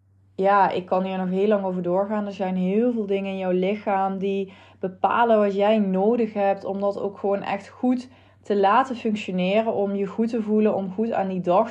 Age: 20-39